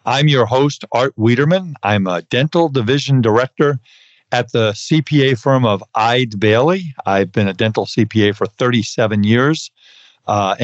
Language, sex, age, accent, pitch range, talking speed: English, male, 50-69, American, 105-130 Hz, 145 wpm